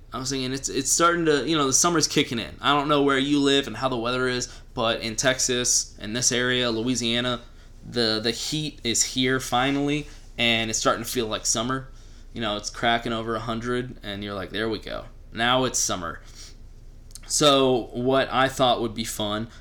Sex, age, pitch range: male, 20-39, 115-130 Hz